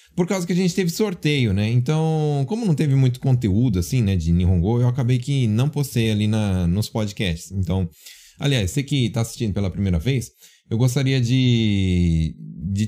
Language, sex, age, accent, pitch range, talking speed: Portuguese, male, 20-39, Brazilian, 100-140 Hz, 180 wpm